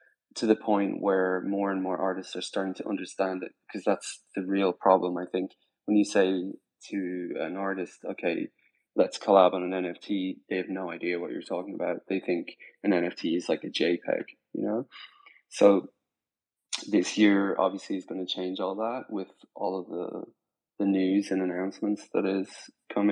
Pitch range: 95-105 Hz